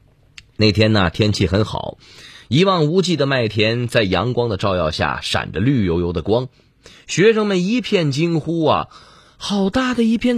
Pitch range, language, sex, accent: 100-140 Hz, Chinese, male, native